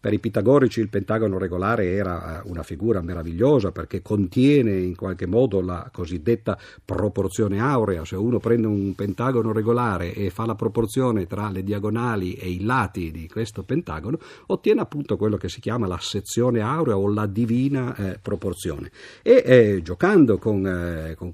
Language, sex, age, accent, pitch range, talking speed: Italian, male, 50-69, native, 95-125 Hz, 160 wpm